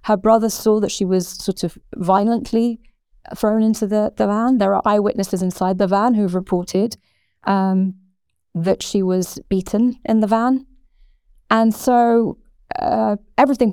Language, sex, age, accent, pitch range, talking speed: English, female, 30-49, British, 185-235 Hz, 155 wpm